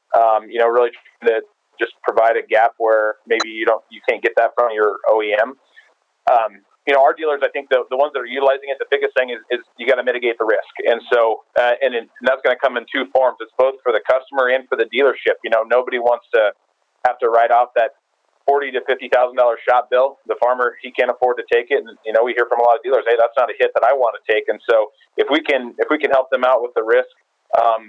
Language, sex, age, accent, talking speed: English, male, 30-49, American, 275 wpm